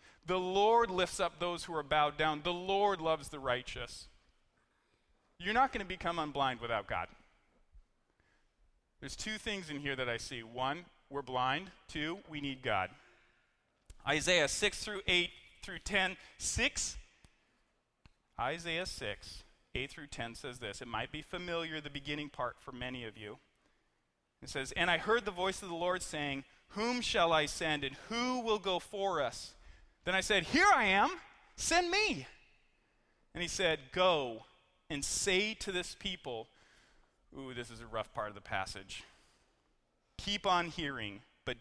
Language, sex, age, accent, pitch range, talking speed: English, male, 40-59, American, 135-195 Hz, 165 wpm